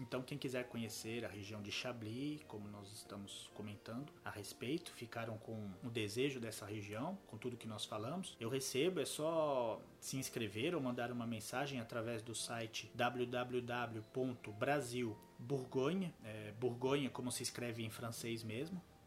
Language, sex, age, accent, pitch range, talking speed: Portuguese, male, 30-49, Brazilian, 110-135 Hz, 140 wpm